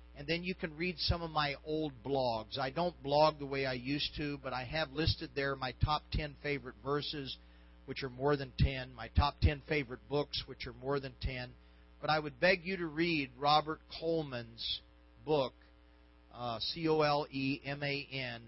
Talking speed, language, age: 180 wpm, English, 40-59